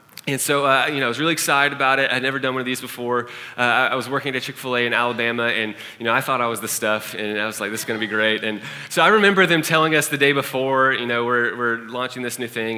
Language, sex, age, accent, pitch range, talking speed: English, male, 20-39, American, 115-145 Hz, 300 wpm